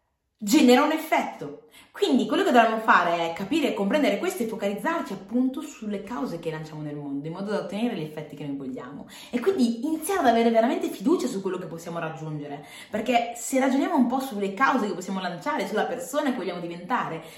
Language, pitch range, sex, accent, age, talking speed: Italian, 185-275 Hz, female, native, 30-49, 200 wpm